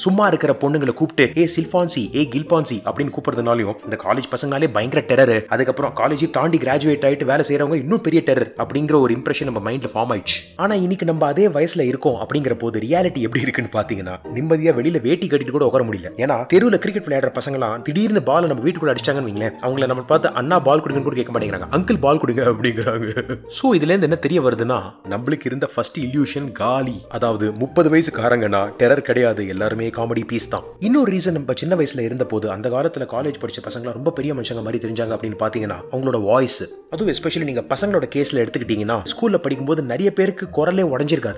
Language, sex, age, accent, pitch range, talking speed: Tamil, male, 30-49, native, 120-170 Hz, 90 wpm